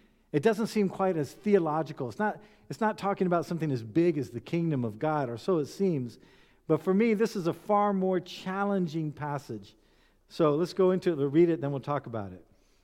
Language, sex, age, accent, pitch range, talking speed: English, male, 50-69, American, 125-190 Hz, 220 wpm